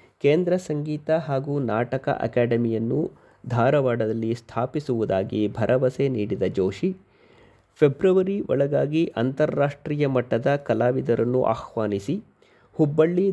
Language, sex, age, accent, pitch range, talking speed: Kannada, male, 30-49, native, 120-165 Hz, 75 wpm